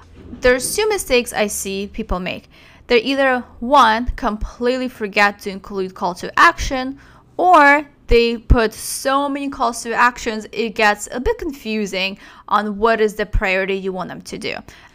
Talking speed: 160 wpm